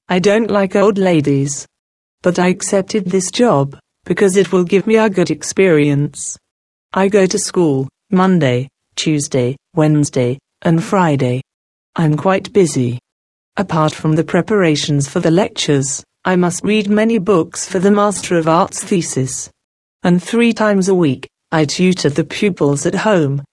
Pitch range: 145-195 Hz